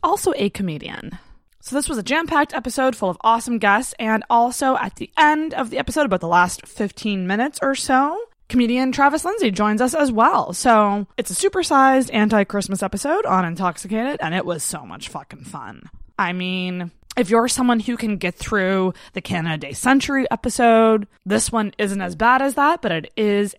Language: English